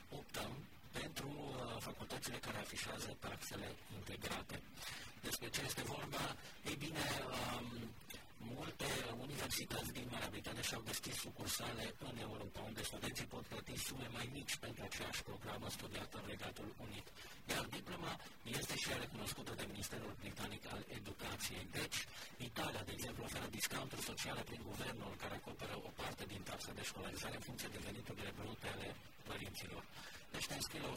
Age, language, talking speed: 50-69, Romanian, 155 wpm